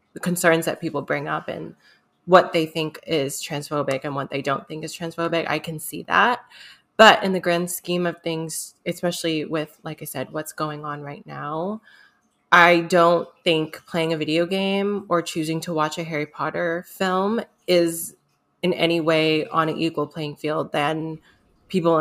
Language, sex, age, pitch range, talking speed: English, female, 20-39, 155-175 Hz, 180 wpm